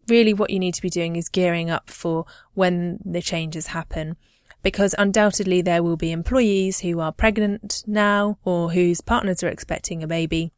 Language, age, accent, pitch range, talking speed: English, 20-39, British, 170-205 Hz, 180 wpm